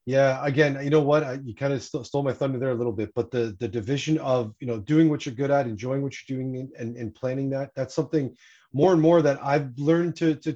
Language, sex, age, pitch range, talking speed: English, male, 30-49, 125-150 Hz, 265 wpm